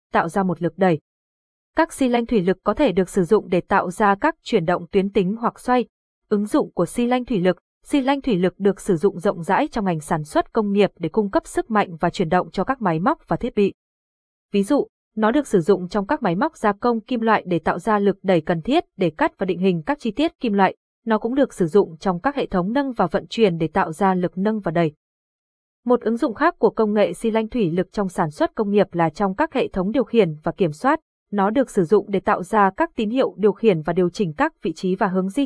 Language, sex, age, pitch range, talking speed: Vietnamese, female, 20-39, 185-235 Hz, 270 wpm